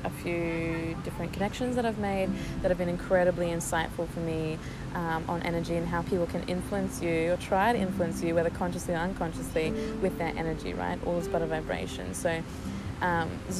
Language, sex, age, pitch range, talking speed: English, female, 20-39, 165-185 Hz, 195 wpm